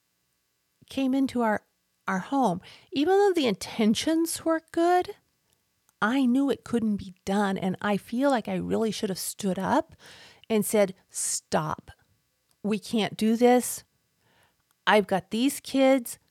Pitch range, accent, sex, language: 185-240 Hz, American, female, English